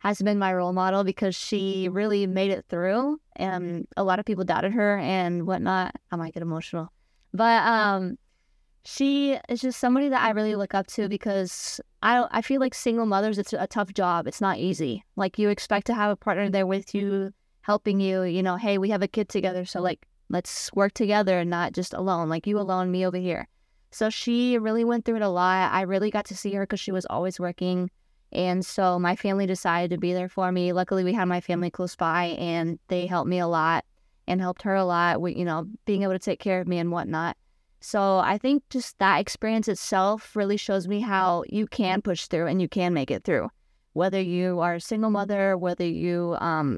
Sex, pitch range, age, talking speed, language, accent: female, 180-210 Hz, 20-39, 225 wpm, English, American